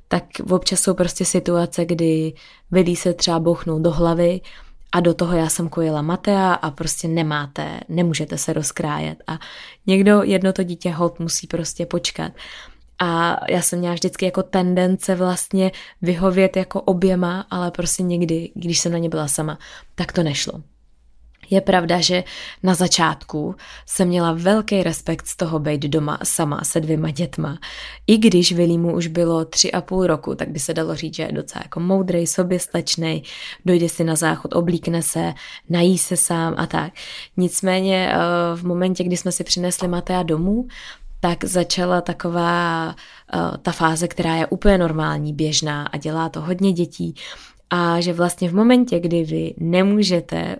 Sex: female